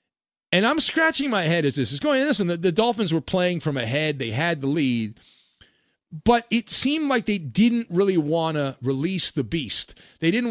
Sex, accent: male, American